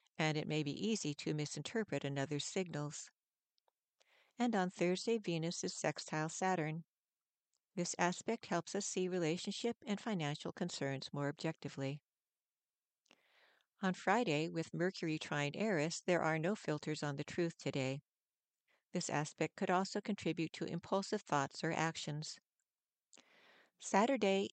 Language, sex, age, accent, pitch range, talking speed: English, female, 60-79, American, 150-185 Hz, 125 wpm